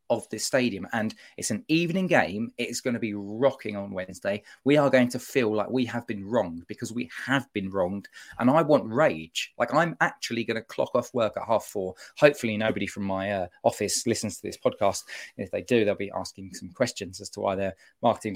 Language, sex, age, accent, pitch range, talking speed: English, male, 20-39, British, 105-135 Hz, 220 wpm